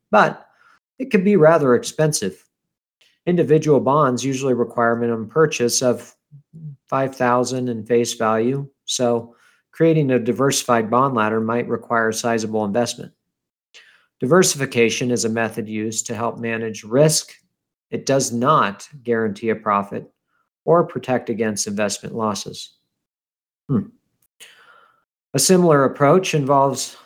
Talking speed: 115 wpm